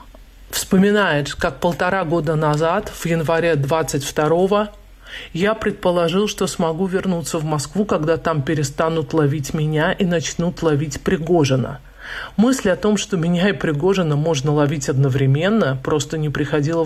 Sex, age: male, 40-59